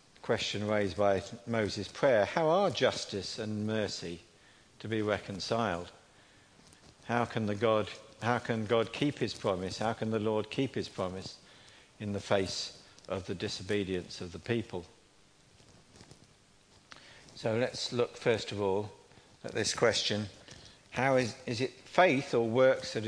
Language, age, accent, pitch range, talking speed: English, 50-69, British, 100-130 Hz, 145 wpm